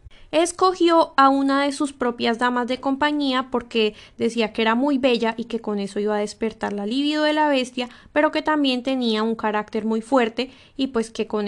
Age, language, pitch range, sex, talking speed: 10-29, Spanish, 215-285 Hz, female, 205 wpm